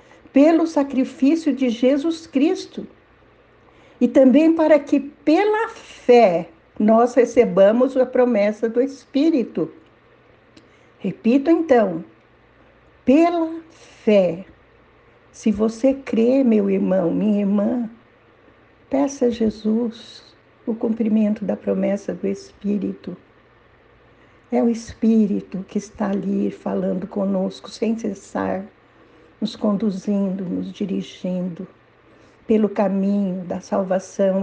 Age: 60-79